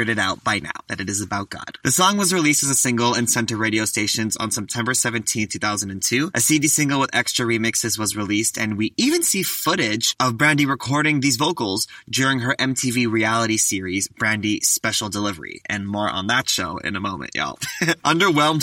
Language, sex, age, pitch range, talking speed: English, male, 20-39, 110-145 Hz, 195 wpm